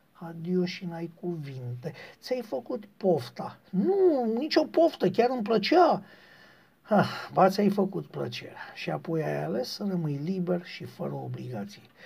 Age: 50-69